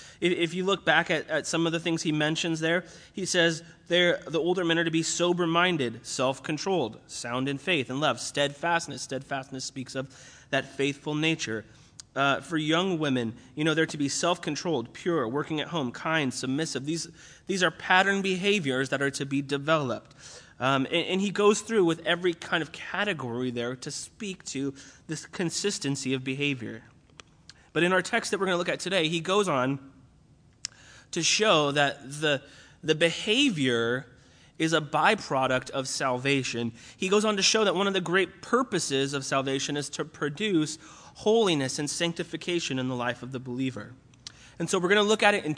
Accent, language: American, English